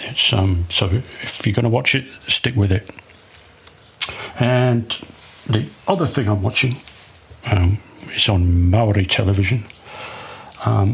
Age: 40-59